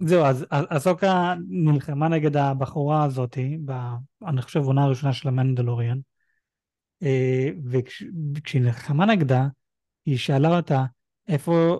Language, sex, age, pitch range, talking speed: Hebrew, male, 30-49, 135-155 Hz, 100 wpm